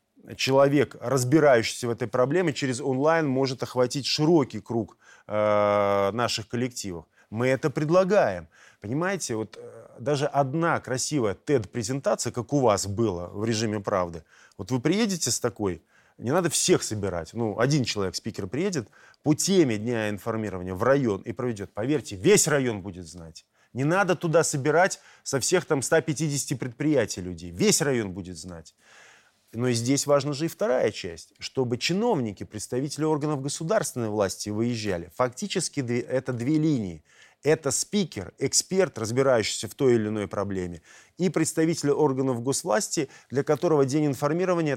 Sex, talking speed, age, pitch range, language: male, 145 wpm, 20-39, 110-150 Hz, Russian